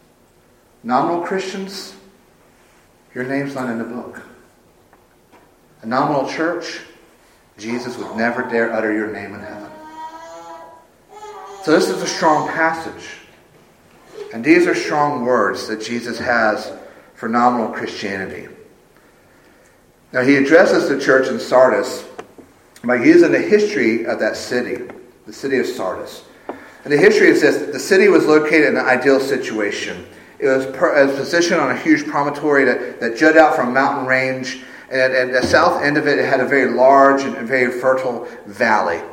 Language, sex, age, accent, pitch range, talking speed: English, male, 50-69, American, 130-180 Hz, 155 wpm